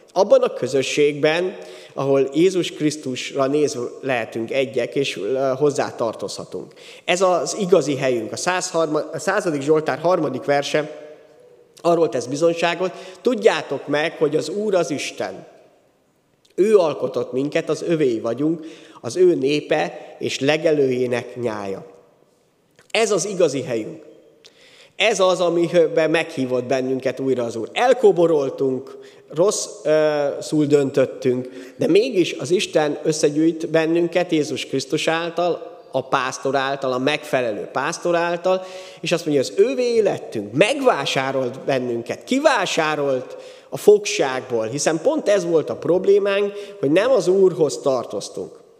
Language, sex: Hungarian, male